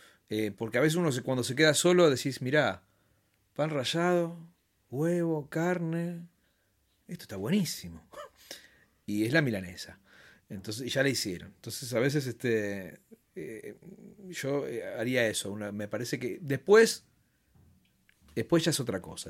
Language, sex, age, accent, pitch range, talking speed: Spanish, male, 40-59, Argentinian, 115-150 Hz, 145 wpm